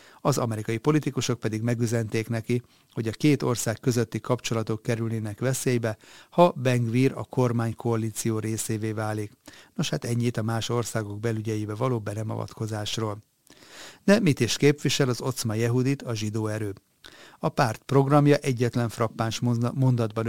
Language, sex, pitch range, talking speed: Hungarian, male, 110-130 Hz, 135 wpm